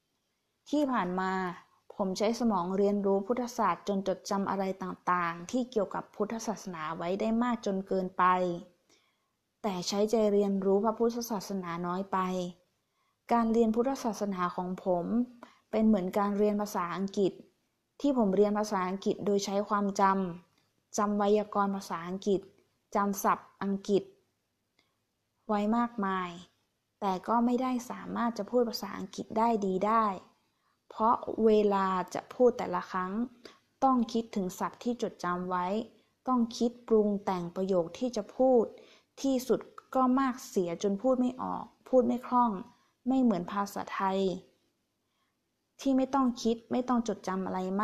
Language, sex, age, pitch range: Thai, female, 20-39, 190-235 Hz